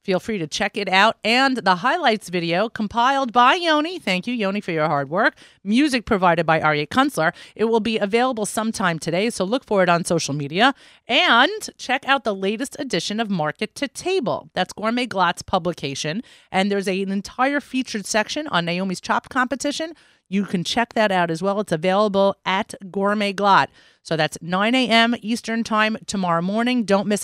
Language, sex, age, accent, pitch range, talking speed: English, female, 40-59, American, 180-240 Hz, 185 wpm